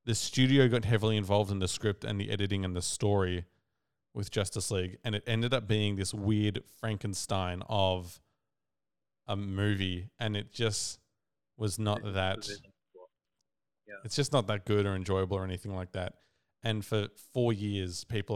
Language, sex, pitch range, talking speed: English, male, 95-110 Hz, 165 wpm